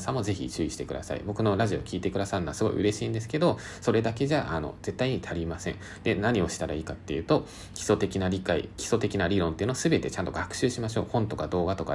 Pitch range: 85-115 Hz